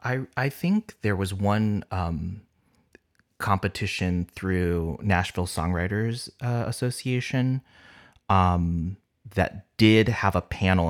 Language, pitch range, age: English, 85-105 Hz, 30-49